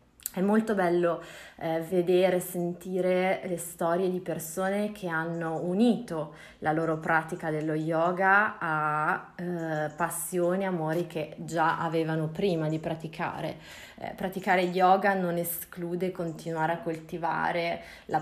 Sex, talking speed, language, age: female, 130 wpm, Italian, 20-39